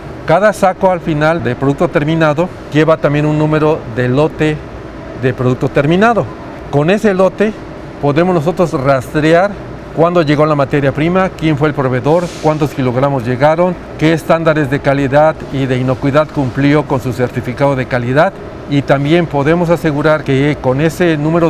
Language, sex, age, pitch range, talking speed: Spanish, male, 50-69, 140-170 Hz, 155 wpm